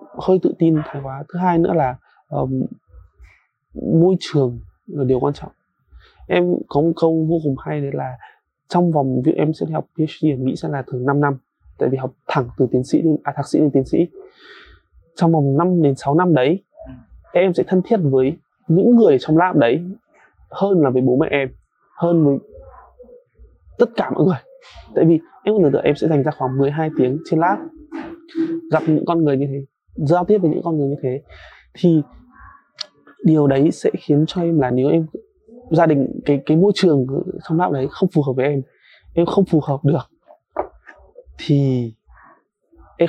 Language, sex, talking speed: Vietnamese, male, 195 wpm